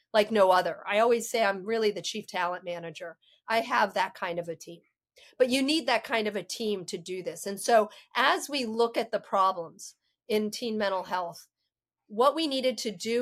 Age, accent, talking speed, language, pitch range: 40-59, American, 215 wpm, English, 205-255 Hz